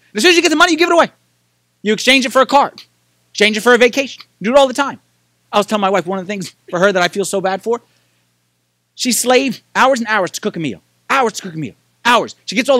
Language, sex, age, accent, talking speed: English, male, 30-49, American, 295 wpm